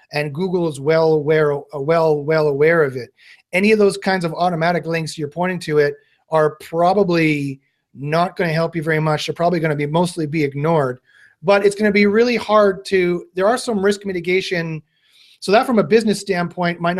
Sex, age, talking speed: male, 30-49, 205 wpm